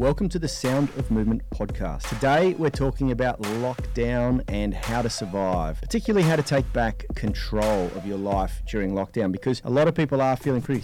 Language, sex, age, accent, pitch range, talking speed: English, male, 30-49, Australian, 105-135 Hz, 195 wpm